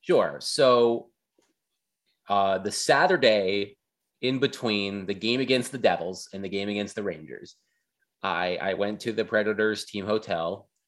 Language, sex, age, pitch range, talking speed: English, male, 30-49, 95-110 Hz, 145 wpm